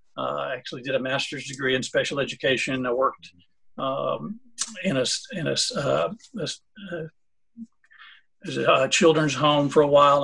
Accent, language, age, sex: American, English, 50-69, male